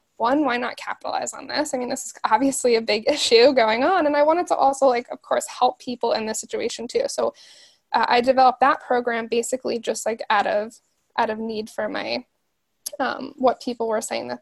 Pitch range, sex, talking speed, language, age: 230-285 Hz, female, 215 wpm, English, 10-29